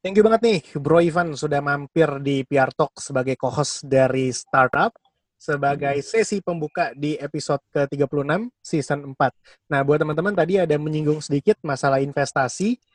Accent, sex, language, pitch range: native, male, Indonesian, 130-160 Hz